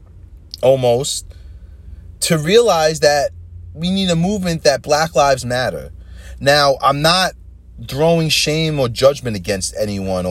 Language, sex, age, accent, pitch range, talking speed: English, male, 30-49, American, 85-130 Hz, 120 wpm